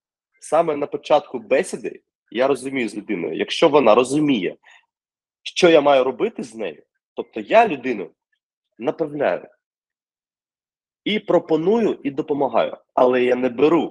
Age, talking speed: 20-39, 125 wpm